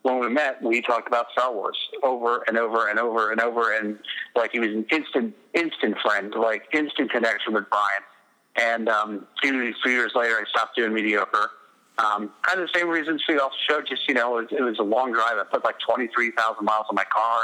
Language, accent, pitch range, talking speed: English, American, 110-130 Hz, 215 wpm